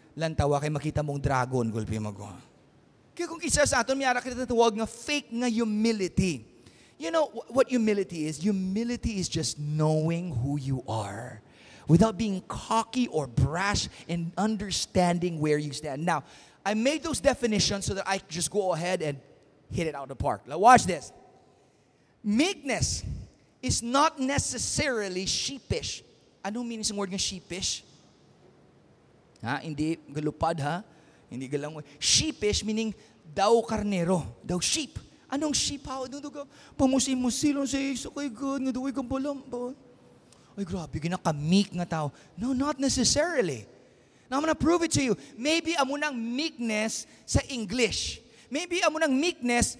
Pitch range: 155-260 Hz